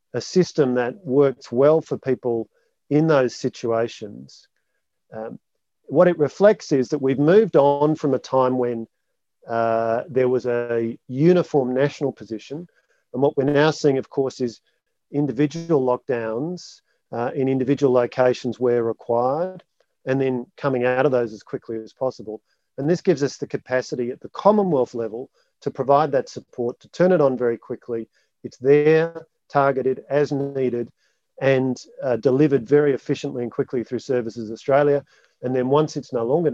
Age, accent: 40-59, Australian